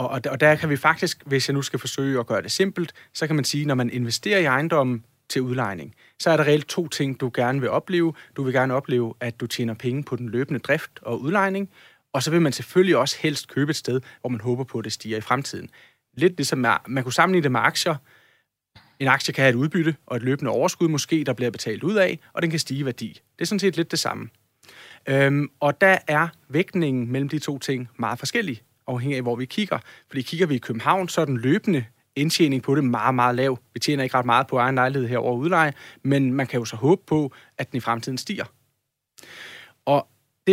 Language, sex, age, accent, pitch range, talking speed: Danish, male, 30-49, native, 125-155 Hz, 235 wpm